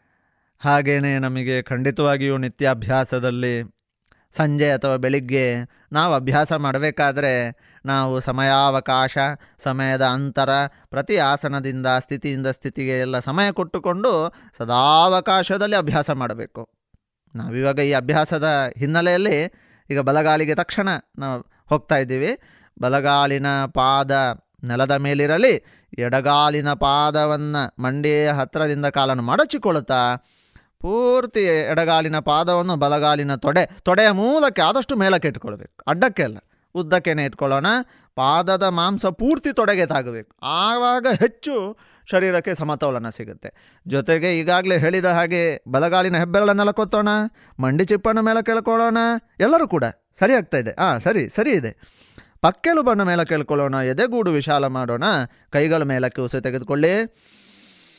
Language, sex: Kannada, male